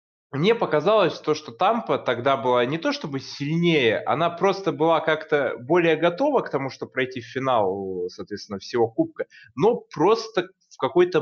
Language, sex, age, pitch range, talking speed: Russian, male, 20-39, 120-170 Hz, 160 wpm